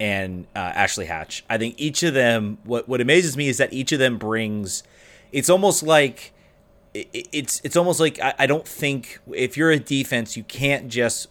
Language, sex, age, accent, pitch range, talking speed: English, male, 30-49, American, 110-140 Hz, 200 wpm